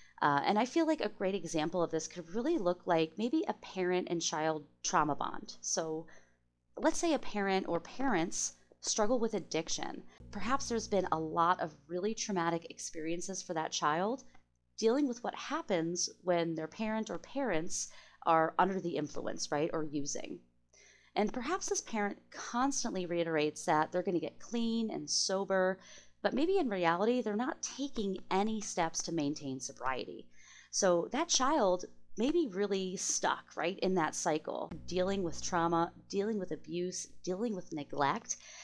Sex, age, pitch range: female, 30-49, 165-230 Hz